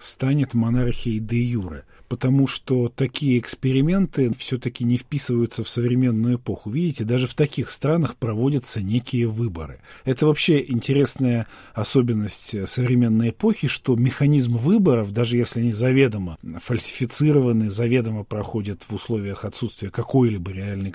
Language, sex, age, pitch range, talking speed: Russian, male, 50-69, 105-135 Hz, 120 wpm